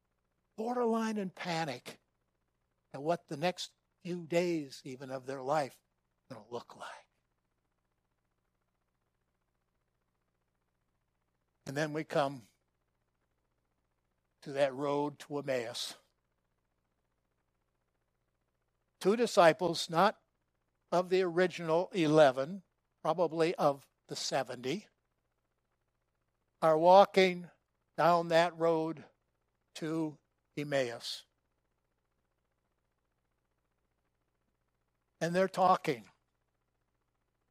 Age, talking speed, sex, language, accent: 60-79, 75 wpm, male, English, American